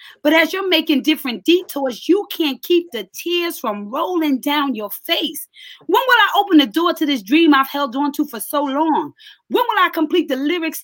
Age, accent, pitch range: 30-49, American, 270-345 Hz